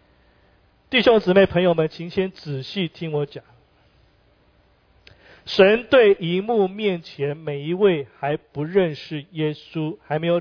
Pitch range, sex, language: 150-205 Hz, male, Chinese